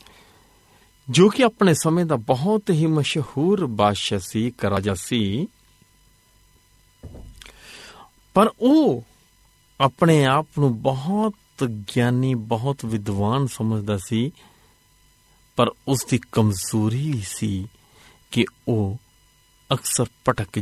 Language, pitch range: Punjabi, 110-165 Hz